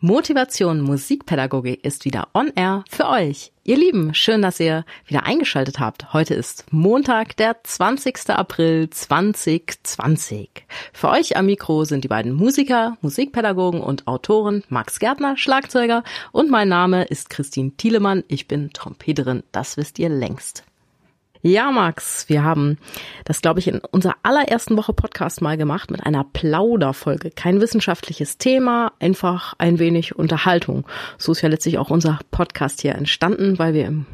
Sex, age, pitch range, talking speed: female, 30-49, 155-200 Hz, 150 wpm